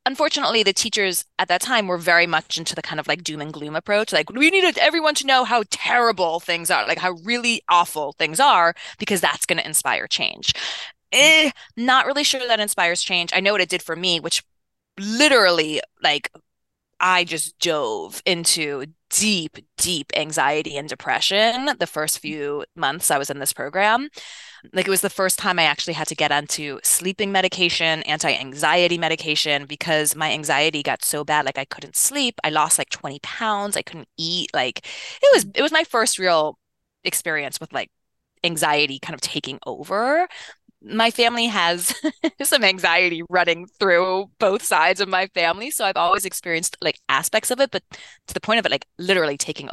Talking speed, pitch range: 185 wpm, 155-220 Hz